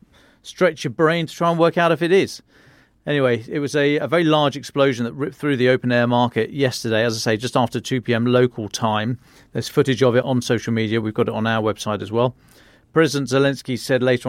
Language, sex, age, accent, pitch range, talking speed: English, male, 40-59, British, 115-140 Hz, 225 wpm